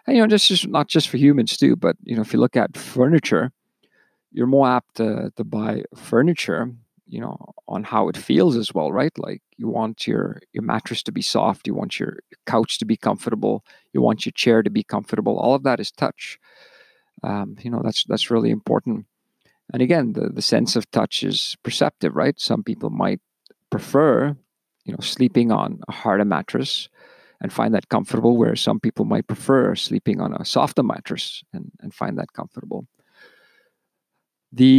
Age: 40-59